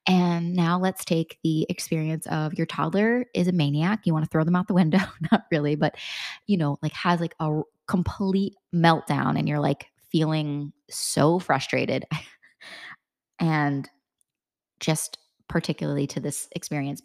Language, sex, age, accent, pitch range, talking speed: English, female, 20-39, American, 155-190 Hz, 150 wpm